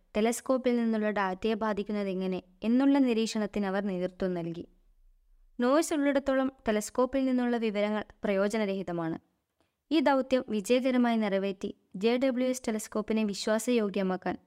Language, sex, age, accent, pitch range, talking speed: Malayalam, female, 20-39, native, 195-245 Hz, 90 wpm